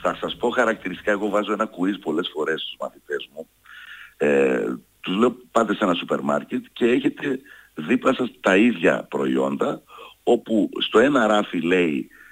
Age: 60-79